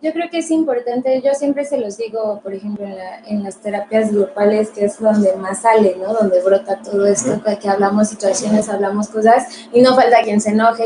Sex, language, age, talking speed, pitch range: female, Spanish, 20-39, 215 wpm, 215-275 Hz